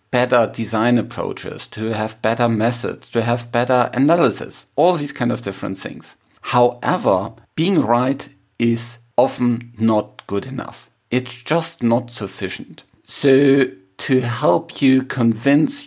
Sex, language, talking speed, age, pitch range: male, English, 130 wpm, 50-69, 105-125 Hz